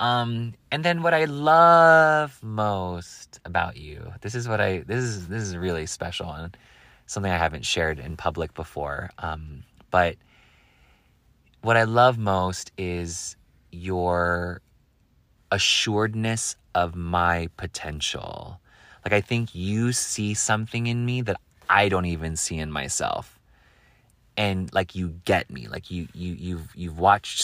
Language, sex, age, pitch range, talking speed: English, male, 30-49, 85-110 Hz, 140 wpm